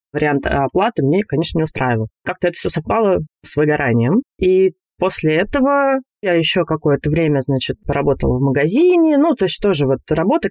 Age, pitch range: 20-39, 145-195 Hz